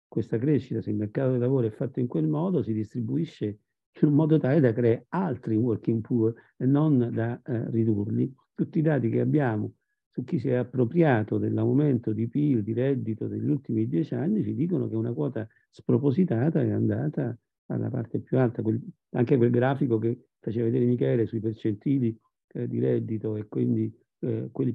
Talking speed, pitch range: 185 wpm, 110-135 Hz